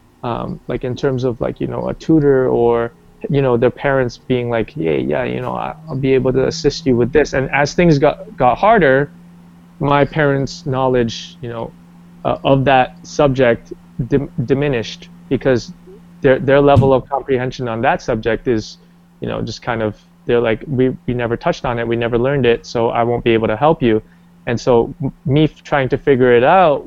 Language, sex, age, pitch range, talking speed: English, male, 20-39, 125-175 Hz, 200 wpm